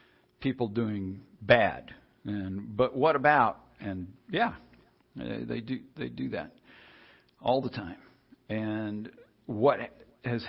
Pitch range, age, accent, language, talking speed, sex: 100-120 Hz, 60-79, American, English, 115 wpm, male